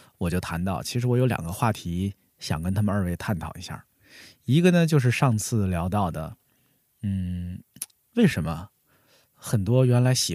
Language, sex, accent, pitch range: Chinese, male, native, 90-135 Hz